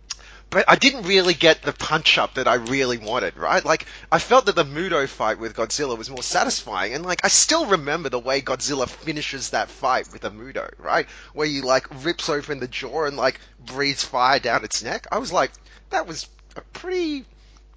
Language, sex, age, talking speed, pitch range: English, male, 20-39, 205 wpm, 130-170 Hz